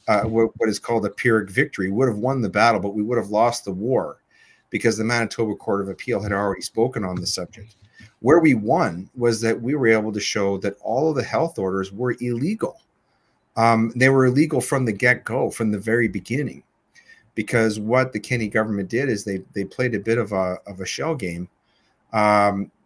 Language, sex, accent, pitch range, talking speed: English, male, American, 100-120 Hz, 215 wpm